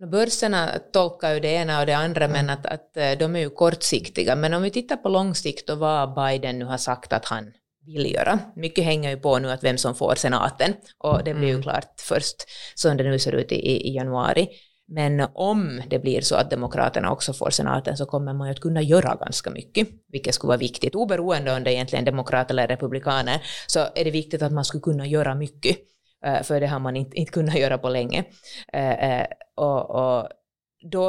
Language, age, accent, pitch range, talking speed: Swedish, 30-49, Finnish, 130-160 Hz, 210 wpm